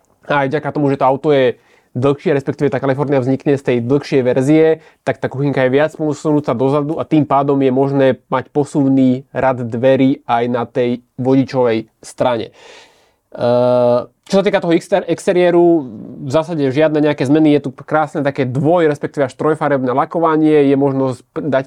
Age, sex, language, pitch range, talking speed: 20-39, male, Slovak, 130-150 Hz, 170 wpm